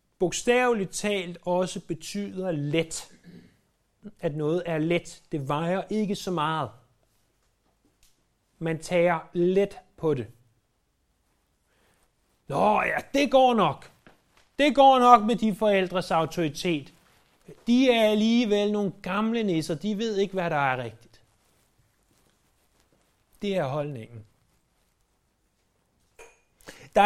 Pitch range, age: 150-210 Hz, 30-49